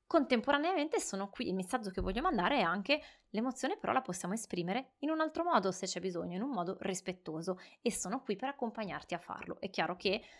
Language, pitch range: Italian, 180-220 Hz